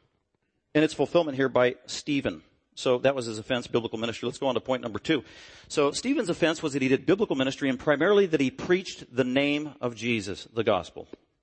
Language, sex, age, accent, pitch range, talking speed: English, male, 50-69, American, 125-145 Hz, 210 wpm